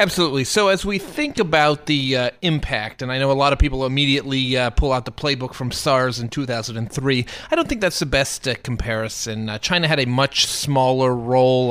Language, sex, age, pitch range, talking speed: English, male, 30-49, 125-150 Hz, 210 wpm